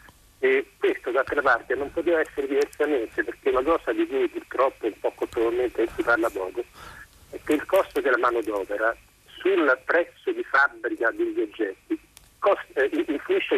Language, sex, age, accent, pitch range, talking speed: Italian, male, 50-69, native, 335-410 Hz, 165 wpm